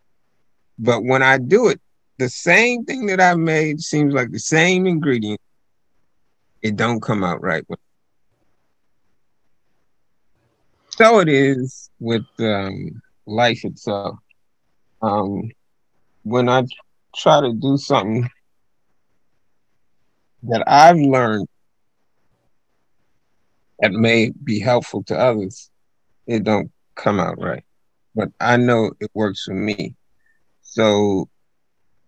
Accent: American